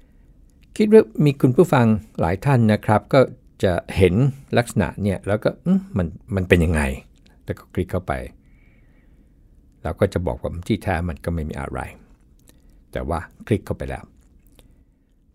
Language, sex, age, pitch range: Thai, male, 60-79, 75-110 Hz